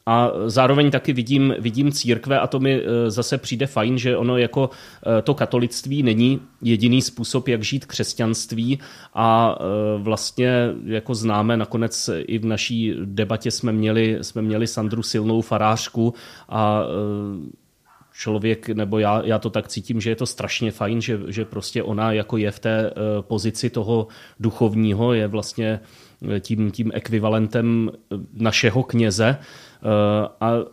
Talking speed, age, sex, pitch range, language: 140 wpm, 30-49, male, 110-125 Hz, Czech